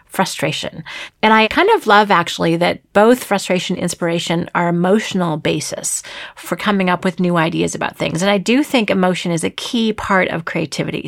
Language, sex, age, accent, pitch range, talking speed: English, female, 40-59, American, 175-230 Hz, 185 wpm